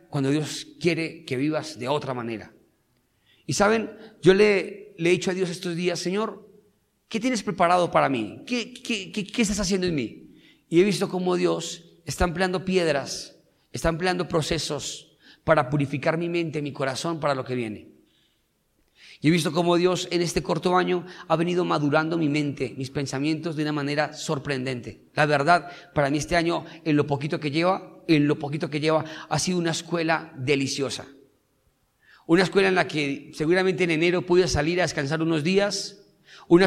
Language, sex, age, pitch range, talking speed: Spanish, male, 40-59, 150-180 Hz, 180 wpm